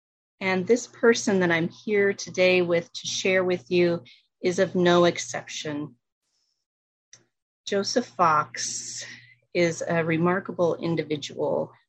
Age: 30-49